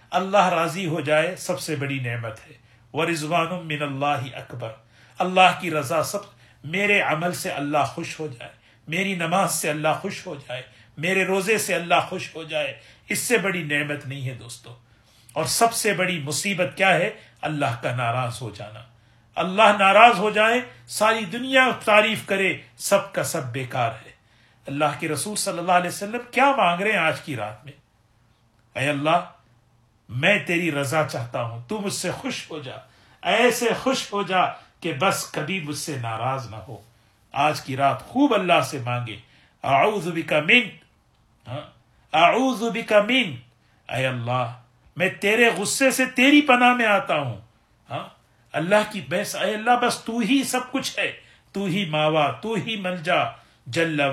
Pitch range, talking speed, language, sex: 125-195 Hz, 165 wpm, Urdu, male